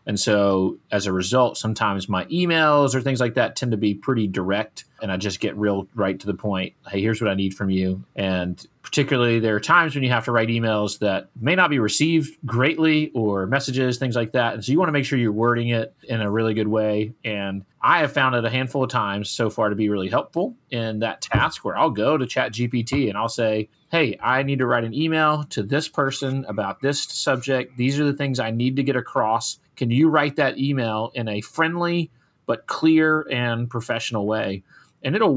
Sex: male